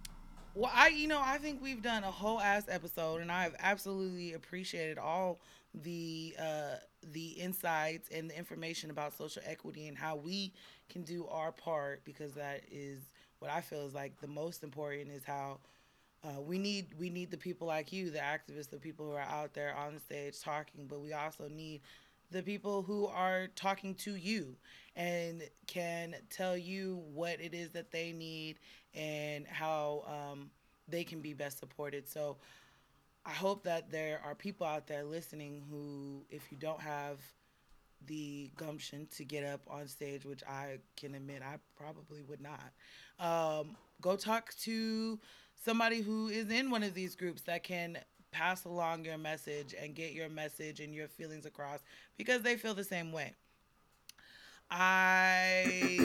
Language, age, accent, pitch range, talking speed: English, 20-39, American, 145-185 Hz, 170 wpm